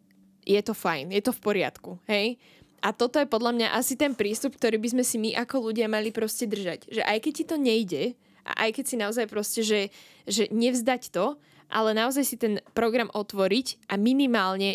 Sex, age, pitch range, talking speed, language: female, 10-29, 195-235 Hz, 205 wpm, Slovak